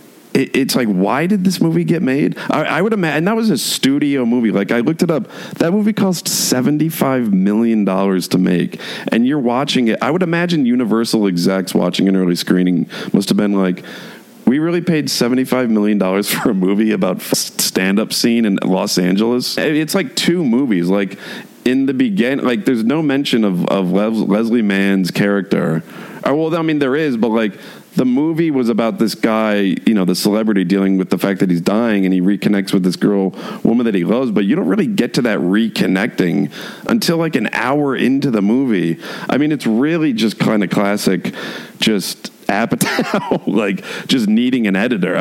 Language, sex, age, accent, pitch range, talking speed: English, male, 40-59, American, 100-170 Hz, 185 wpm